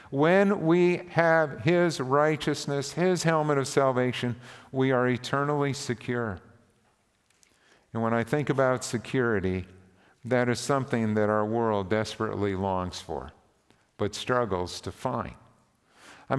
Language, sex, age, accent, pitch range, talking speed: English, male, 50-69, American, 115-140 Hz, 120 wpm